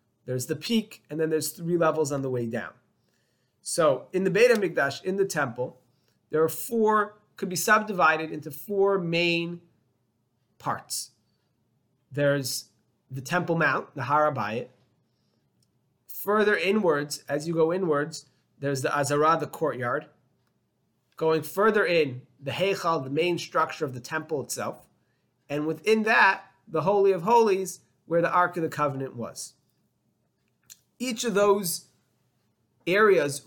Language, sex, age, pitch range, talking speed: English, male, 30-49, 135-190 Hz, 140 wpm